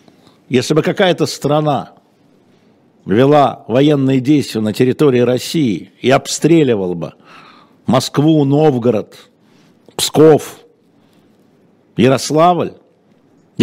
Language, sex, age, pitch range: Russian, male, 60-79, 120-150 Hz